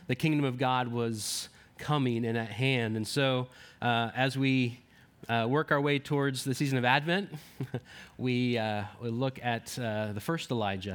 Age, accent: 30-49, American